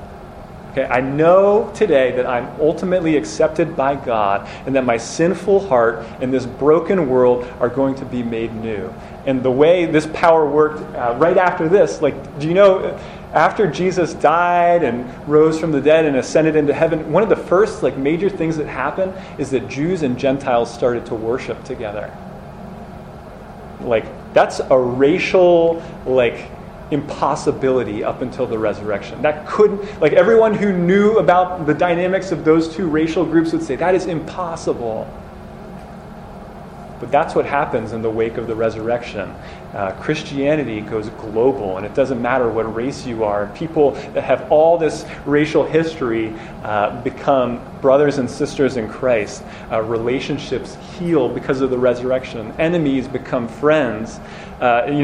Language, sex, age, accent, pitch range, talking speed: English, male, 30-49, American, 125-165 Hz, 160 wpm